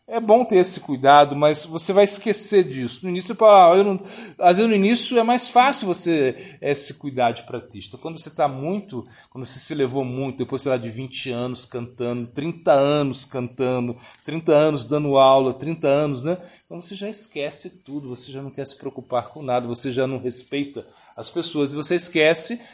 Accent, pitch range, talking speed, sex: Brazilian, 125-180 Hz, 205 wpm, male